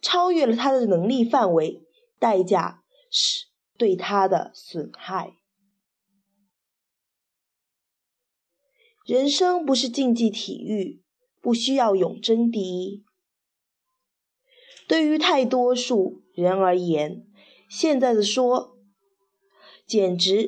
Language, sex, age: Chinese, female, 20-39